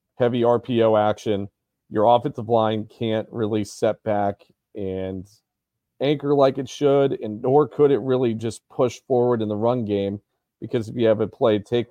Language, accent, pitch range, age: English, American, 100-120 Hz, 40-59